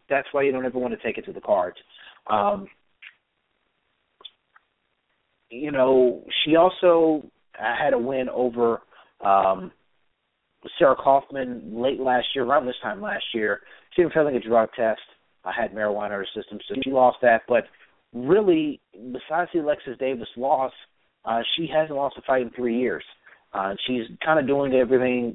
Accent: American